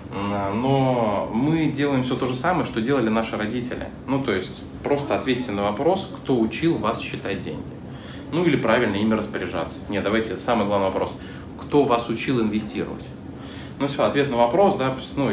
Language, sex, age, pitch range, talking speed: Russian, male, 20-39, 100-125 Hz, 170 wpm